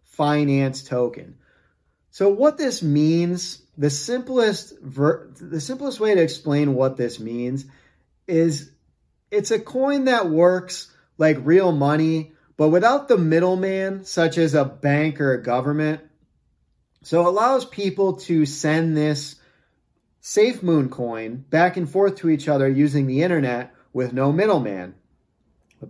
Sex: male